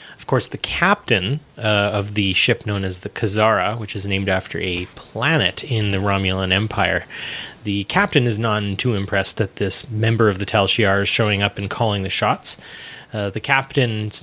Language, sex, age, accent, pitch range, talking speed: English, male, 30-49, American, 100-125 Hz, 185 wpm